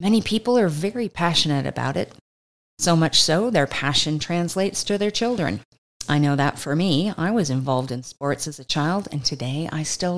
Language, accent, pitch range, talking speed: English, American, 140-195 Hz, 195 wpm